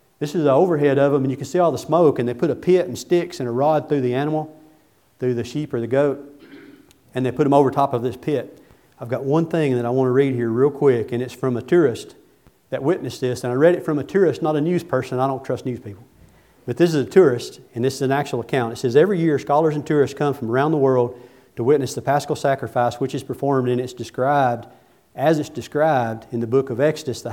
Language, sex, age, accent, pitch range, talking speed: English, male, 40-59, American, 125-145 Hz, 265 wpm